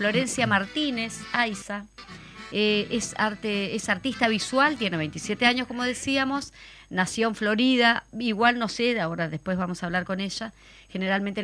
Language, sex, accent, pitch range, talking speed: Spanish, female, Argentinian, 190-245 Hz, 145 wpm